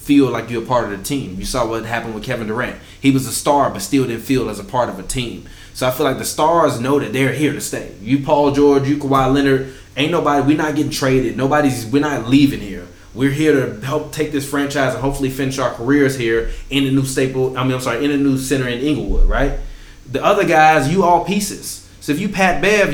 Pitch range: 120-150 Hz